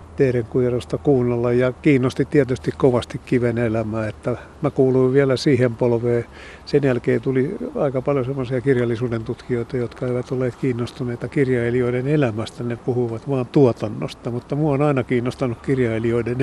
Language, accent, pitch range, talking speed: Finnish, native, 115-130 Hz, 135 wpm